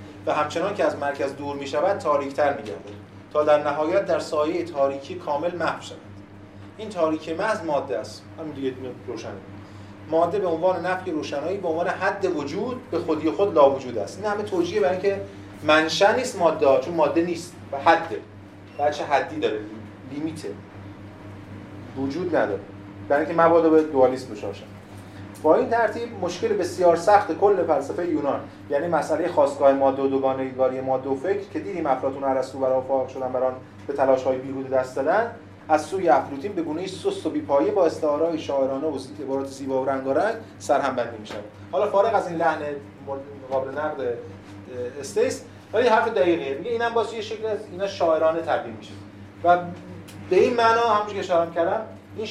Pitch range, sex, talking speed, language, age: 105-170 Hz, male, 170 wpm, Persian, 30-49